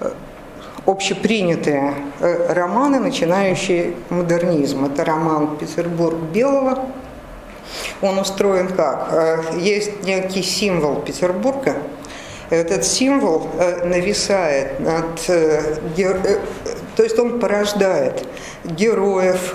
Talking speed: 70 wpm